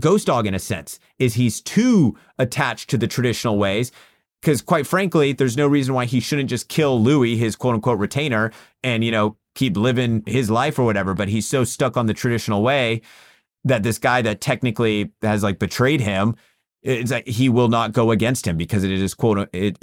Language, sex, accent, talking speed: English, male, American, 205 wpm